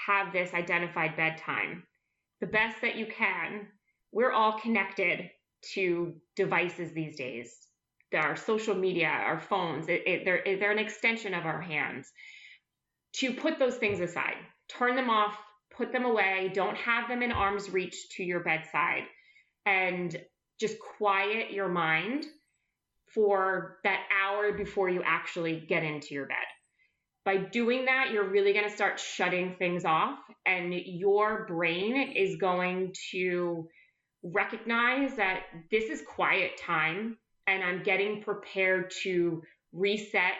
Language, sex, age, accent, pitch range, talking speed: English, female, 30-49, American, 175-215 Hz, 135 wpm